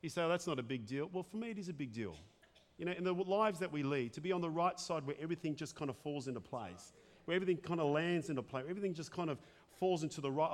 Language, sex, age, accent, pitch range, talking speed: English, male, 40-59, Australian, 140-160 Hz, 300 wpm